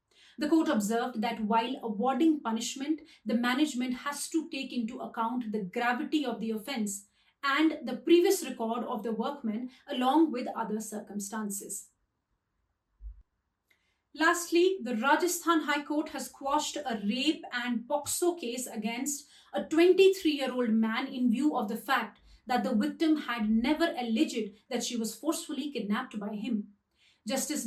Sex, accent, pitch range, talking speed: female, Indian, 225-295 Hz, 140 wpm